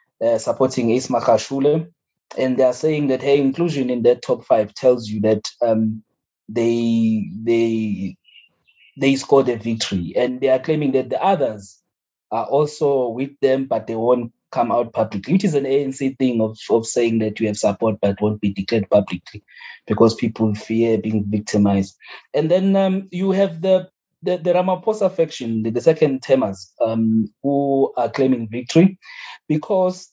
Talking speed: 165 wpm